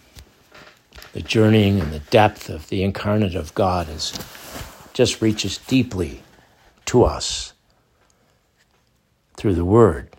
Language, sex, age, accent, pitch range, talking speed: English, male, 60-79, American, 90-110 Hz, 105 wpm